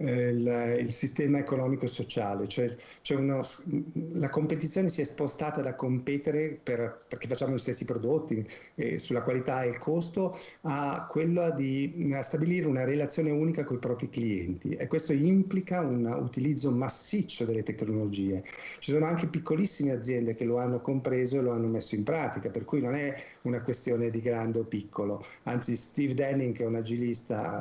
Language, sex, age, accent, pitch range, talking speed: Italian, male, 50-69, native, 120-145 Hz, 170 wpm